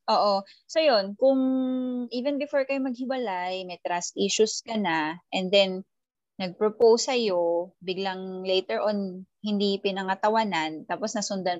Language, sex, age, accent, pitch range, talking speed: Filipino, female, 20-39, native, 190-235 Hz, 125 wpm